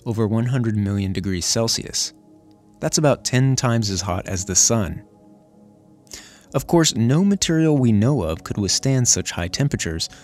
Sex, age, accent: male, 30-49, American